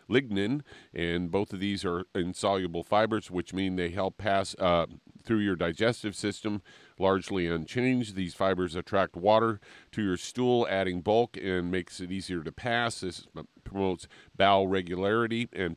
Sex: male